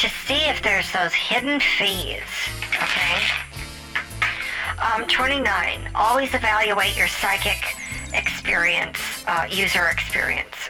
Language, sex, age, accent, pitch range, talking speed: English, male, 50-69, American, 140-220 Hz, 100 wpm